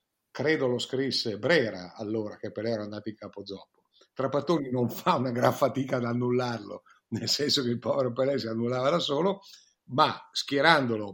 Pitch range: 115-135 Hz